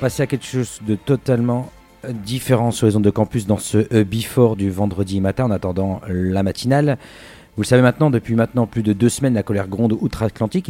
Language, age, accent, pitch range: French, 40-59, French, 105-130 Hz